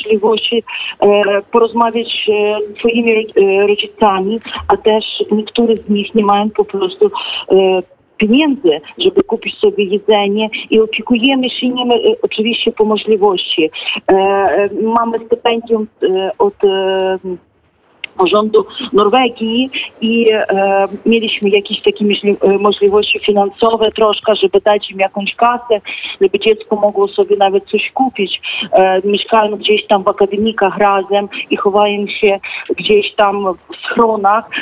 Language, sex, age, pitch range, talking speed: Polish, female, 40-59, 210-265 Hz, 100 wpm